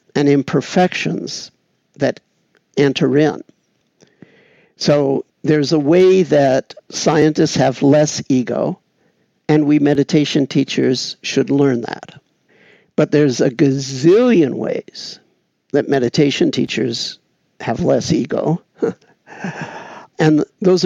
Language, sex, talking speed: English, male, 100 wpm